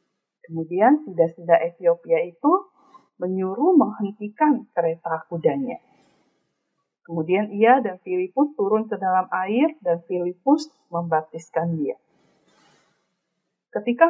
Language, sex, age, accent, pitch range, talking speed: Indonesian, female, 40-59, native, 180-285 Hz, 95 wpm